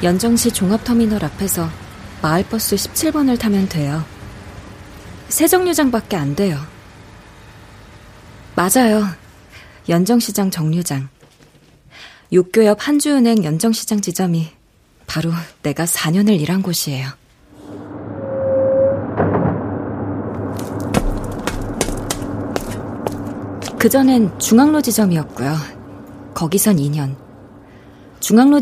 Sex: female